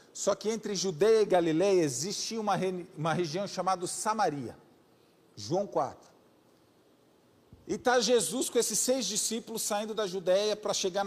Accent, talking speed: Brazilian, 145 wpm